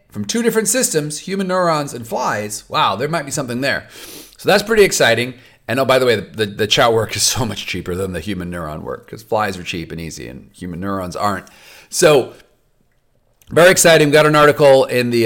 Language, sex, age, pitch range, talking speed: English, male, 40-59, 105-155 Hz, 220 wpm